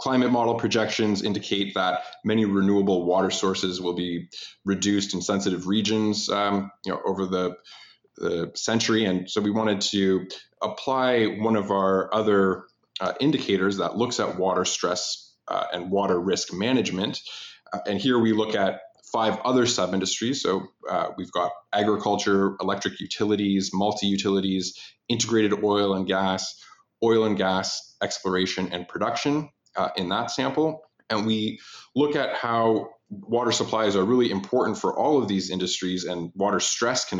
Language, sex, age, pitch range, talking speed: English, male, 20-39, 95-110 Hz, 150 wpm